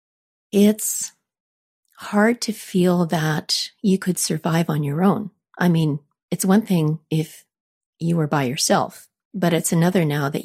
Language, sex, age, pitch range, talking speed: English, female, 40-59, 160-195 Hz, 150 wpm